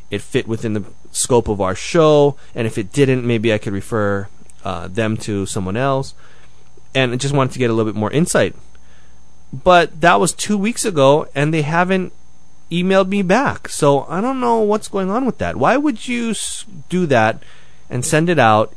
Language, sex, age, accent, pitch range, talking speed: English, male, 20-39, American, 100-150 Hz, 200 wpm